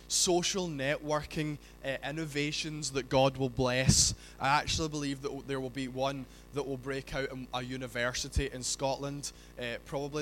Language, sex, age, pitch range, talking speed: English, male, 20-39, 105-140 Hz, 160 wpm